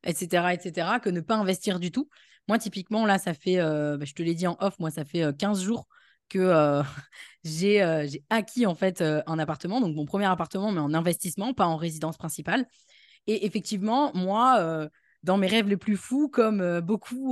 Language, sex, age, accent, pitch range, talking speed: French, female, 20-39, French, 165-215 Hz, 215 wpm